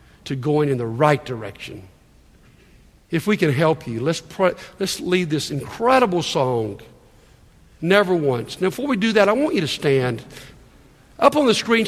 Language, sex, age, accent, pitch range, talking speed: English, male, 50-69, American, 175-255 Hz, 165 wpm